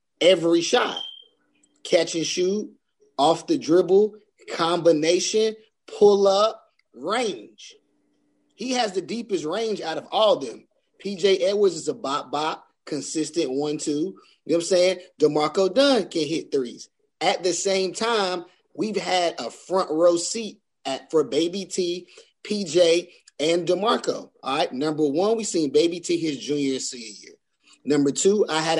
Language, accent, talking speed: English, American, 150 wpm